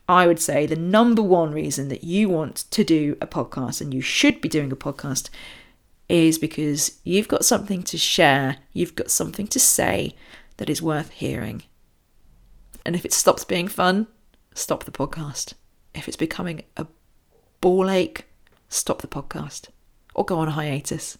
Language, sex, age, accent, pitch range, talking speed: English, female, 40-59, British, 155-215 Hz, 170 wpm